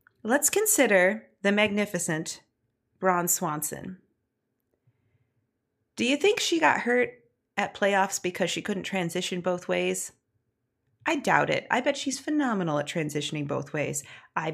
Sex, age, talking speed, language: female, 30-49, 130 wpm, English